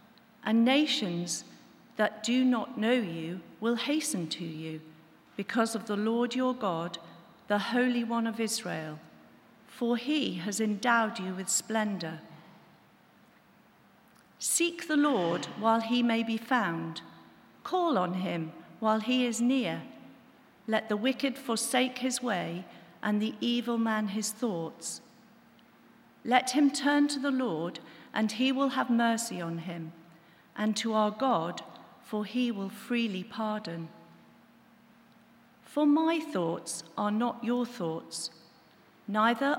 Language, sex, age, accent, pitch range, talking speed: English, female, 50-69, British, 190-240 Hz, 130 wpm